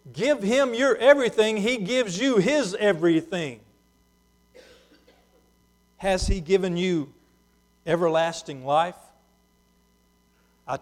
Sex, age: male, 50-69